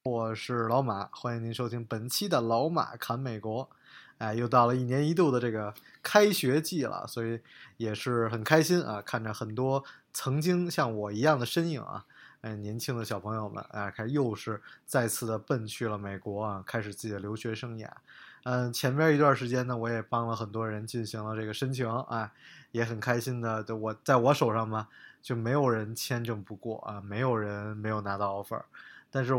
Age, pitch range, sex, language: 20-39, 110-145 Hz, male, Chinese